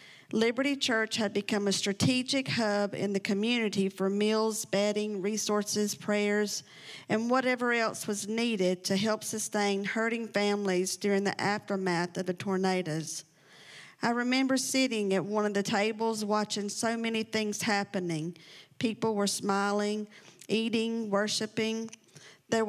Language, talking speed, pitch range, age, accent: English, 130 wpm, 195-225 Hz, 50-69, American